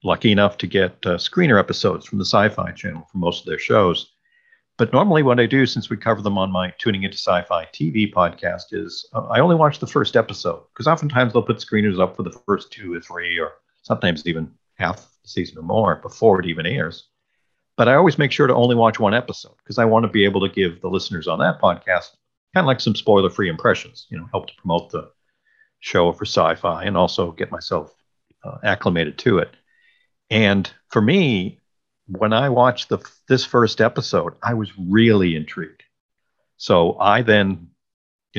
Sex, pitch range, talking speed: male, 100-130 Hz, 200 wpm